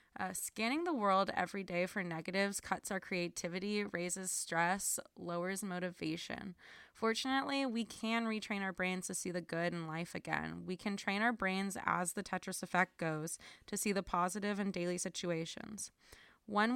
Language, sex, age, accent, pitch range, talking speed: English, female, 20-39, American, 175-210 Hz, 165 wpm